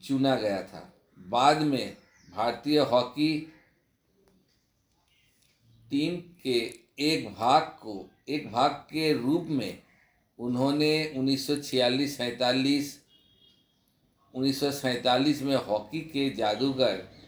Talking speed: 85 wpm